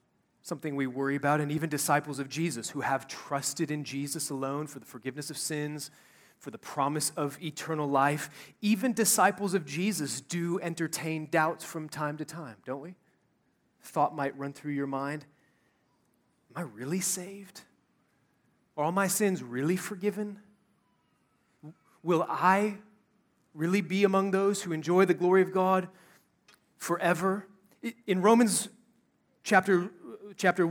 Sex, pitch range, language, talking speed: male, 150-195 Hz, English, 140 wpm